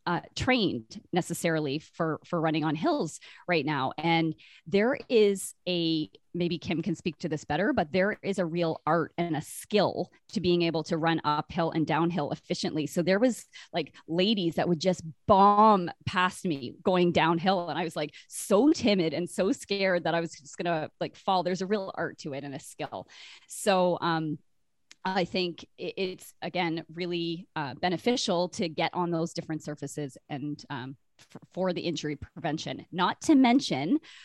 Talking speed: 180 wpm